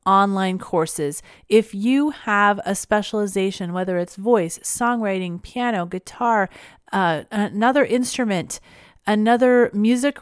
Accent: American